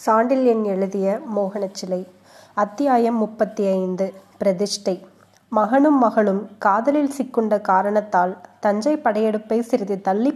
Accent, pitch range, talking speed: native, 200-245 Hz, 100 wpm